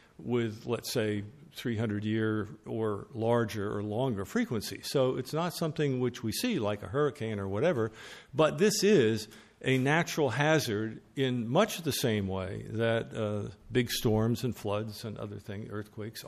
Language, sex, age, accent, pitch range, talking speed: English, male, 50-69, American, 110-145 Hz, 160 wpm